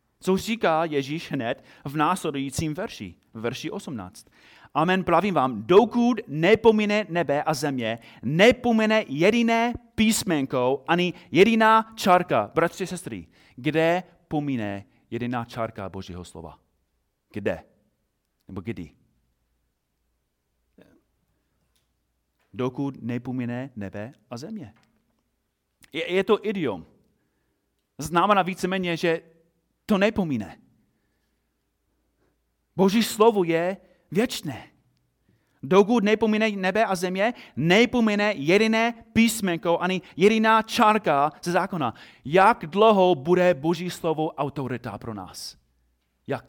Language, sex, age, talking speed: Czech, male, 30-49, 95 wpm